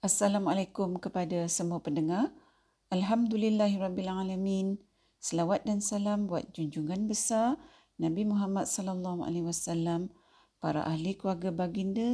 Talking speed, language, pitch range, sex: 95 wpm, Malay, 170-225 Hz, female